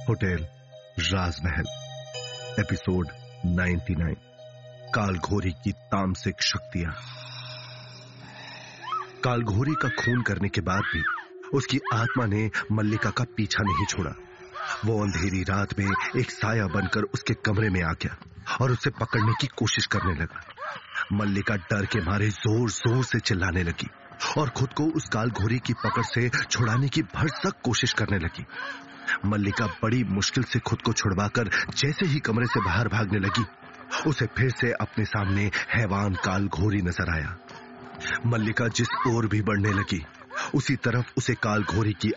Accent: native